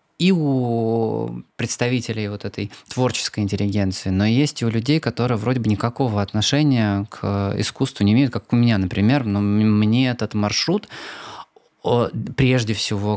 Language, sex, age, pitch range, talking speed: Russian, male, 20-39, 105-130 Hz, 140 wpm